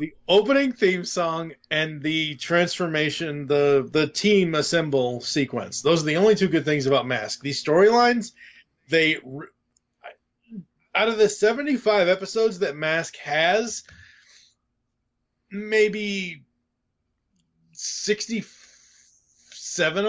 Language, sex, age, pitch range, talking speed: English, male, 20-39, 140-195 Hz, 100 wpm